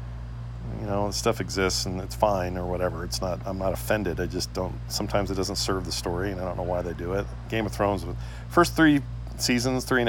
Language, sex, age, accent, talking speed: English, male, 40-59, American, 240 wpm